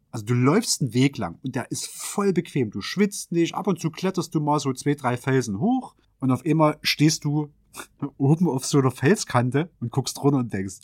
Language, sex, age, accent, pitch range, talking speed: German, male, 30-49, German, 115-150 Hz, 220 wpm